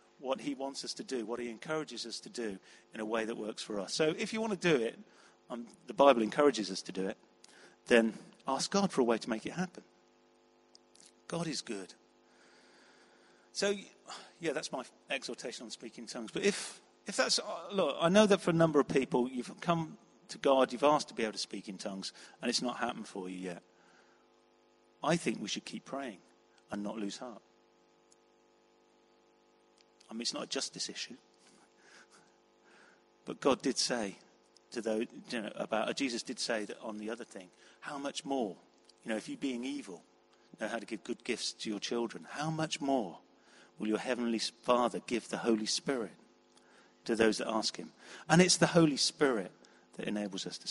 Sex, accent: male, British